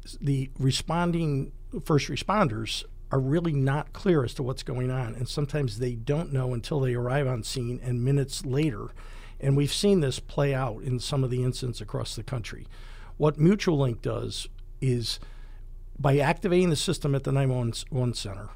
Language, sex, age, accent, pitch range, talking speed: English, male, 50-69, American, 120-145 Hz, 170 wpm